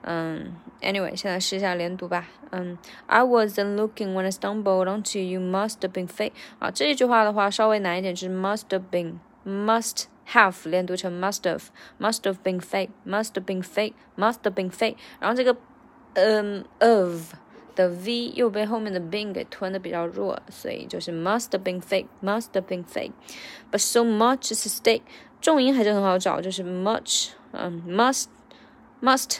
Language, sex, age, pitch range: Chinese, female, 20-39, 190-230 Hz